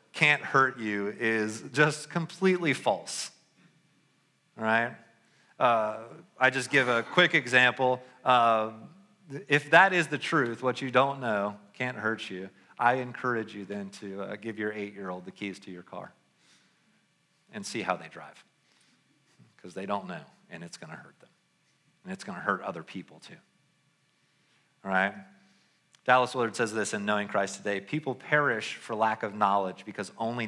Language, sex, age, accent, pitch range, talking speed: English, male, 40-59, American, 105-135 Hz, 165 wpm